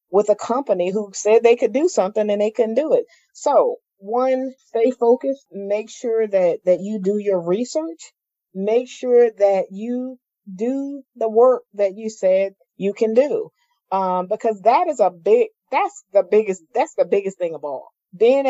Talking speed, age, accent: 180 wpm, 40-59, American